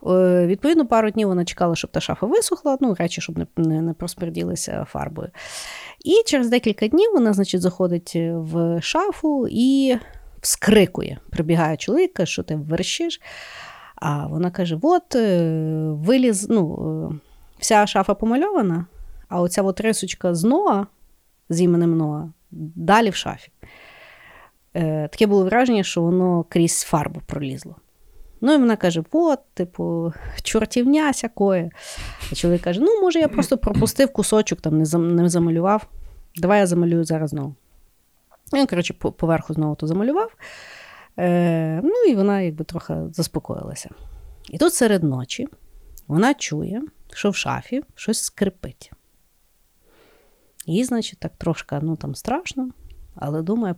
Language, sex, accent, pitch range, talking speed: Ukrainian, female, native, 165-230 Hz, 130 wpm